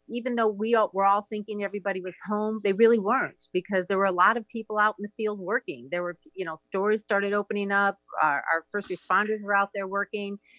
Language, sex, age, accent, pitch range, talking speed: English, female, 40-59, American, 185-225 Hz, 230 wpm